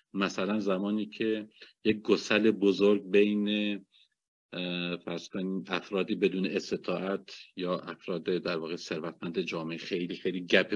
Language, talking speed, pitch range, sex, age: Persian, 105 wpm, 95-110 Hz, male, 50-69